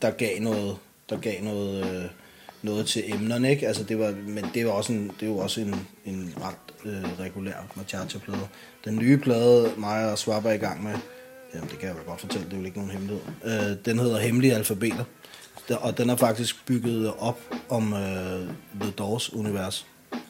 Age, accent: 20-39, native